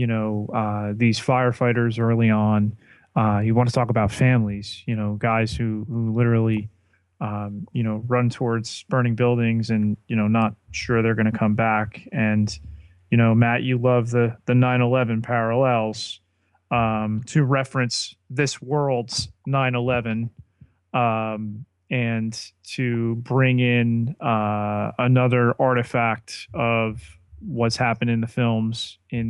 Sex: male